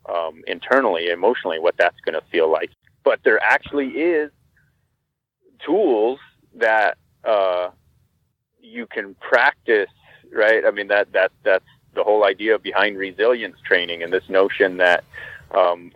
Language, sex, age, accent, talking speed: English, male, 30-49, American, 135 wpm